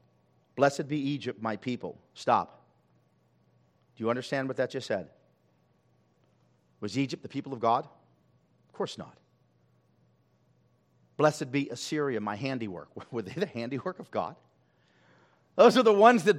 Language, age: English, 50-69